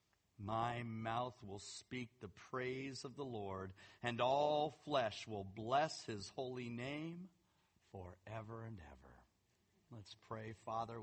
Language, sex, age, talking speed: English, male, 40-59, 125 wpm